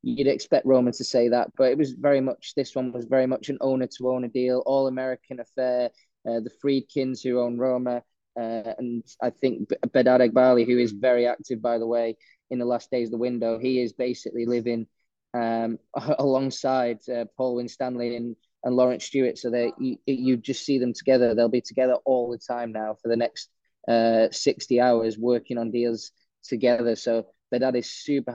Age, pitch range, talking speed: 20-39, 120-130 Hz, 195 wpm